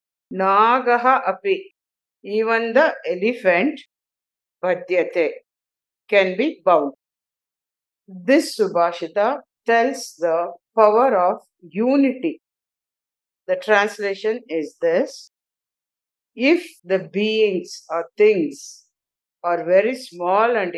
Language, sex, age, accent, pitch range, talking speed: English, female, 50-69, Indian, 175-260 Hz, 80 wpm